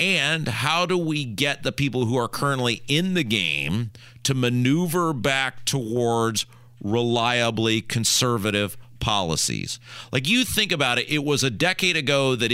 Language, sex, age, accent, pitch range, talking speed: English, male, 40-59, American, 115-145 Hz, 150 wpm